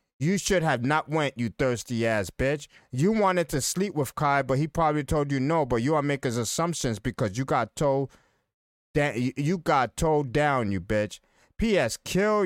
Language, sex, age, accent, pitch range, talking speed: English, male, 30-49, American, 120-165 Hz, 190 wpm